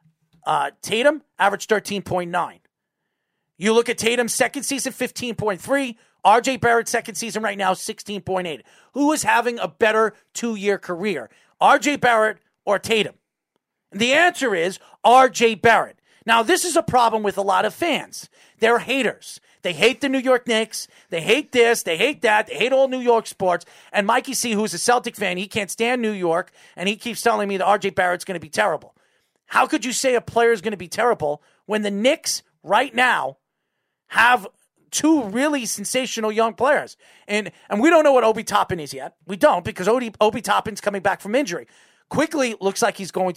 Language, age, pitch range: English, 40-59, 200-260 Hz